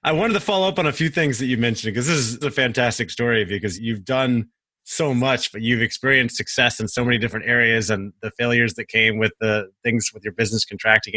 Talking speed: 235 wpm